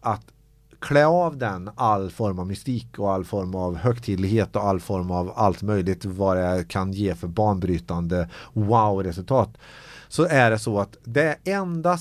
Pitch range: 105-140 Hz